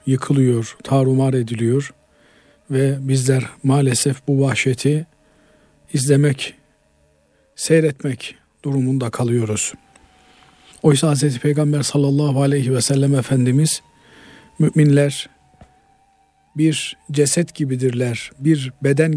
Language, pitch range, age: Turkish, 130-160 Hz, 50-69